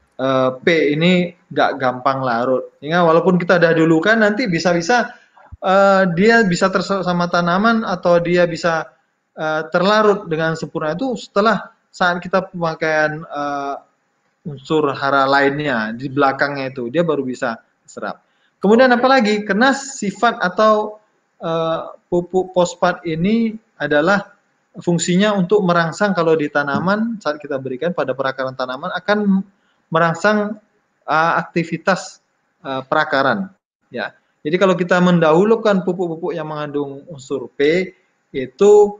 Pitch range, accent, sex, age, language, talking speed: 145-195 Hz, native, male, 20-39, Indonesian, 125 wpm